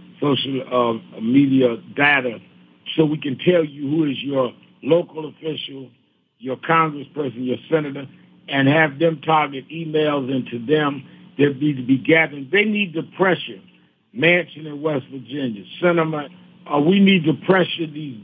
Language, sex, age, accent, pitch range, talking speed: English, male, 60-79, American, 135-170 Hz, 150 wpm